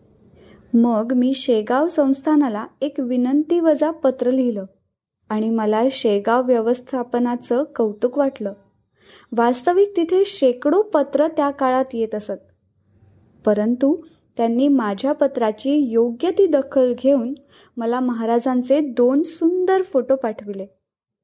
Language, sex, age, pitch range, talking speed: Marathi, female, 20-39, 235-300 Hz, 100 wpm